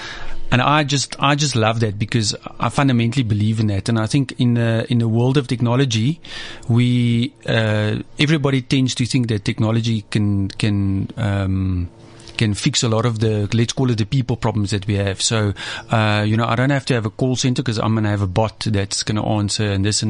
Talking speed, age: 225 wpm, 30-49